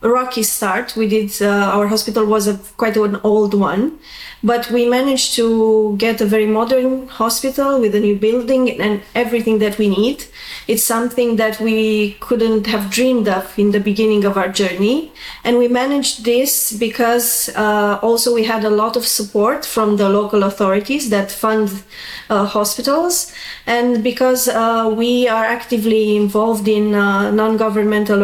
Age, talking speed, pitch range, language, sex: 20-39, 165 wpm, 210-245 Hz, English, female